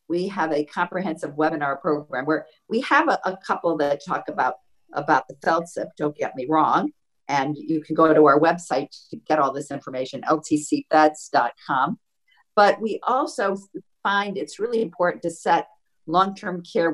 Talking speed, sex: 165 wpm, female